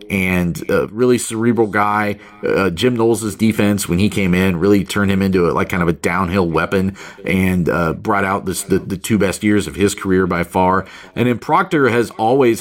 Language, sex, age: English, male, 40-59